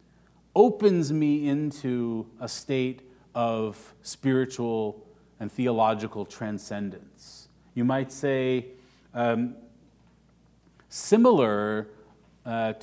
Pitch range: 115-145 Hz